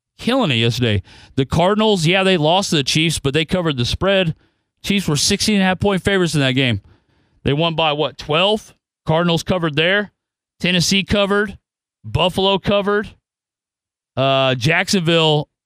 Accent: American